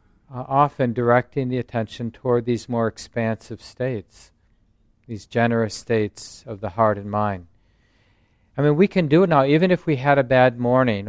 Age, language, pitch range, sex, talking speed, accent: 50-69, English, 110-130 Hz, male, 175 wpm, American